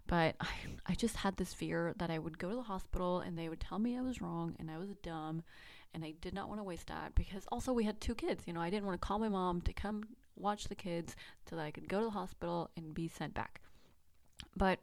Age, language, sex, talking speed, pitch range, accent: 20-39, English, female, 270 wpm, 170-210 Hz, American